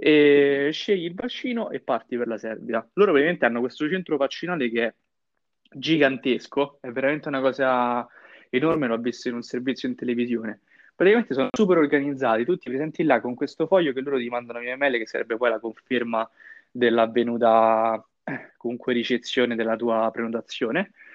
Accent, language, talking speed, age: native, Italian, 165 wpm, 20-39